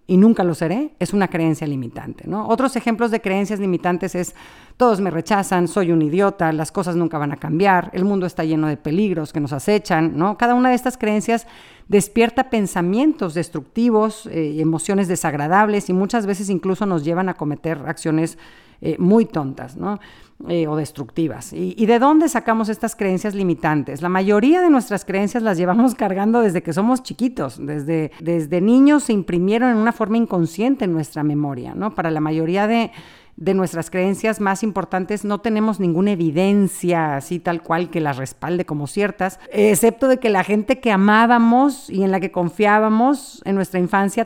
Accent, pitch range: Mexican, 165-220 Hz